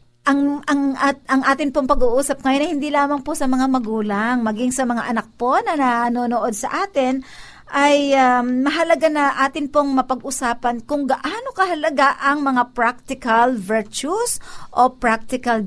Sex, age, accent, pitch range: female, 50-69, native, 235-295 Hz